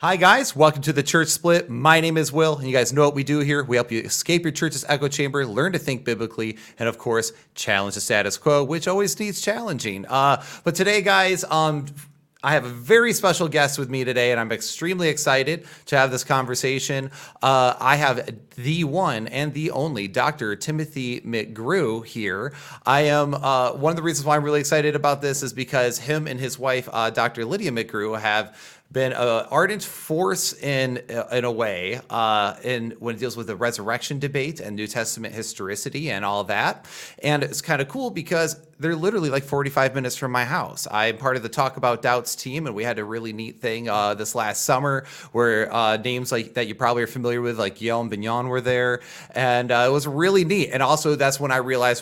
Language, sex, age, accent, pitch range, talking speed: English, male, 30-49, American, 120-150 Hz, 215 wpm